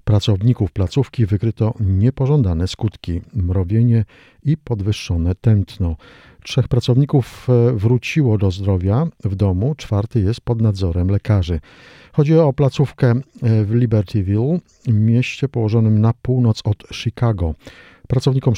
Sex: male